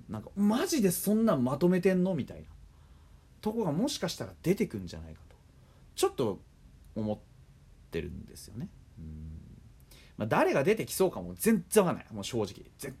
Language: Japanese